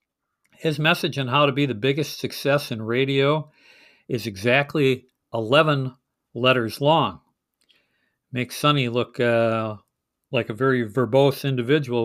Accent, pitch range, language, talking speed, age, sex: American, 120-150 Hz, English, 125 wpm, 50-69, male